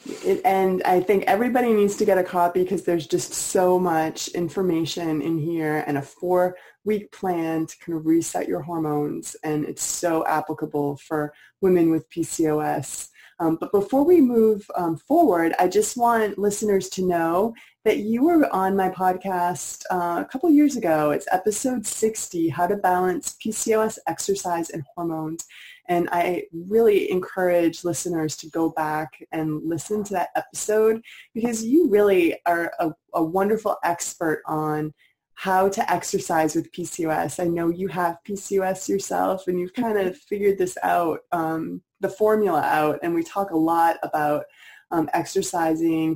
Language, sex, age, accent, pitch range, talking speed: English, female, 20-39, American, 160-200 Hz, 155 wpm